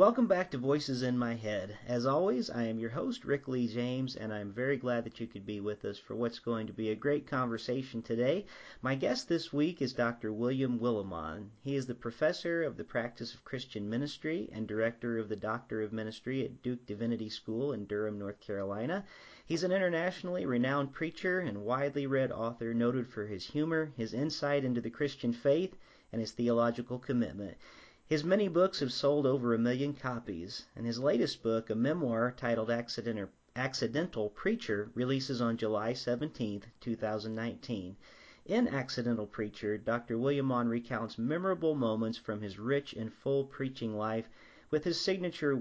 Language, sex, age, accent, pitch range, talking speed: English, male, 40-59, American, 110-140 Hz, 175 wpm